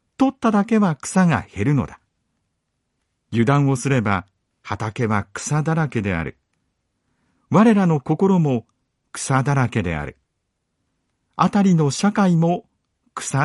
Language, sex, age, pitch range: Japanese, male, 50-69, 105-170 Hz